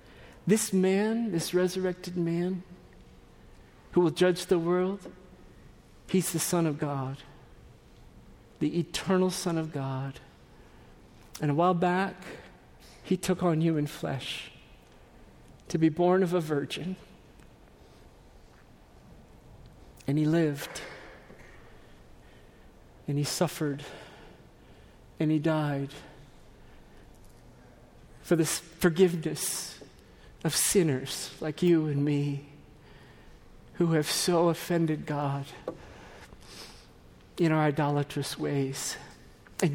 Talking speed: 95 wpm